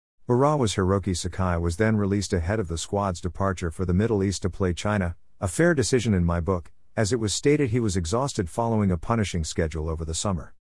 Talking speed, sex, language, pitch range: 210 wpm, male, English, 85-110 Hz